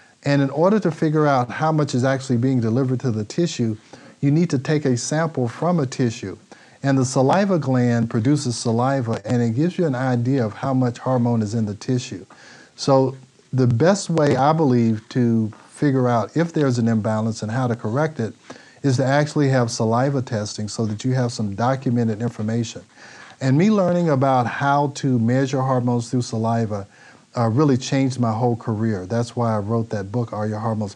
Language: English